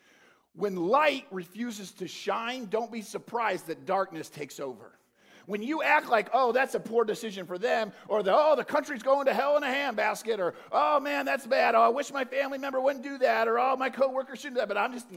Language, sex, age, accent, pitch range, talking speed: English, male, 50-69, American, 190-240 Hz, 225 wpm